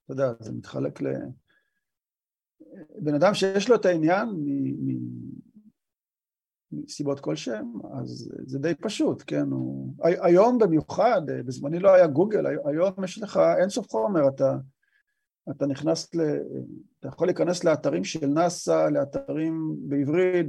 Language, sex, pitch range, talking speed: Hebrew, male, 135-175 Hz, 125 wpm